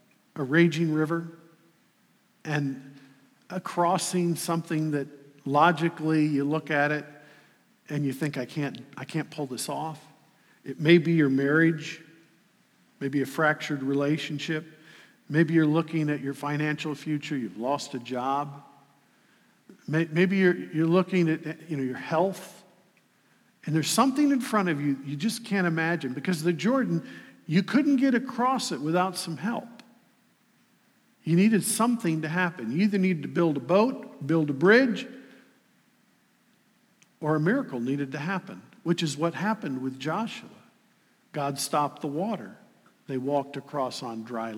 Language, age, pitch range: English, 50-69, 150-215 Hz